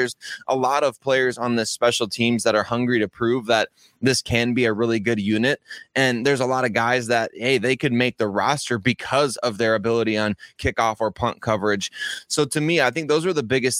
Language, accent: English, American